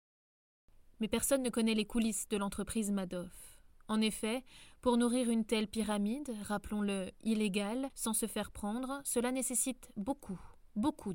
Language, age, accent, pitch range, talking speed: French, 20-39, French, 205-245 Hz, 140 wpm